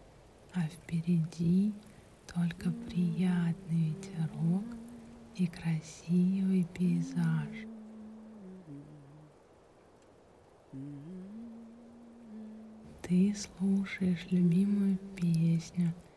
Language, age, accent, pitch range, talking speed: Russian, 30-49, native, 165-190 Hz, 45 wpm